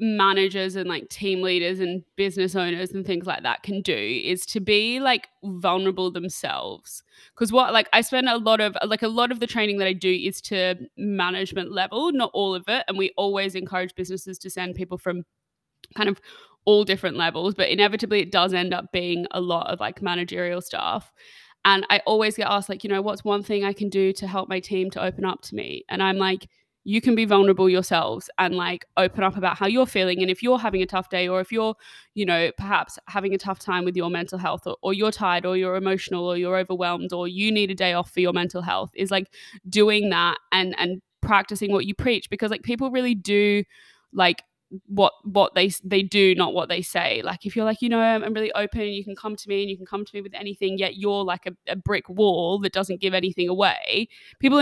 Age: 20-39